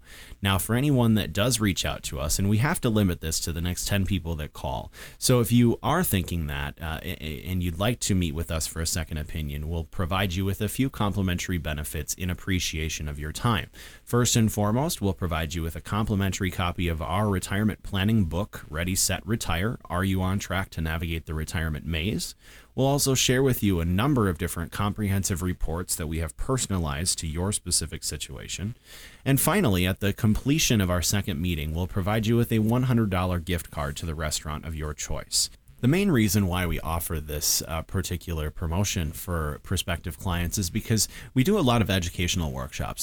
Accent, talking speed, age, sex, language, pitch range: American, 200 wpm, 30-49, male, English, 80-105 Hz